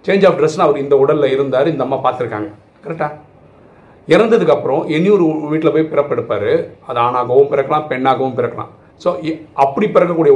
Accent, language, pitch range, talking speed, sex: native, Tamil, 140-210 Hz, 150 wpm, male